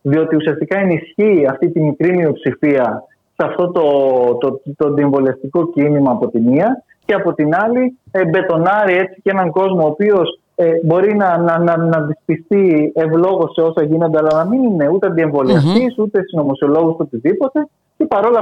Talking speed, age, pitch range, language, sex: 170 wpm, 30-49, 155-215 Hz, Greek, male